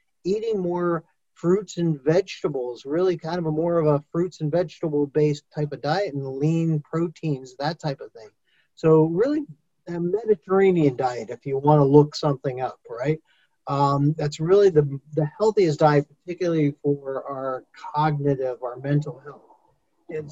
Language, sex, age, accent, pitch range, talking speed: English, male, 40-59, American, 145-180 Hz, 160 wpm